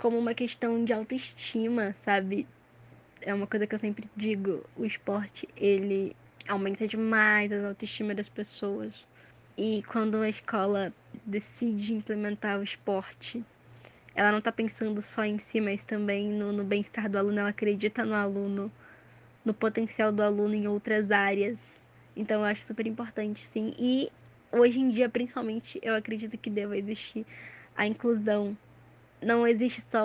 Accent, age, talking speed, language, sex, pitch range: Brazilian, 10-29, 150 wpm, Portuguese, female, 205-220 Hz